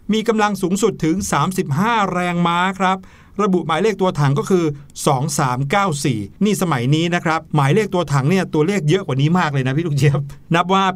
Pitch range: 145-190 Hz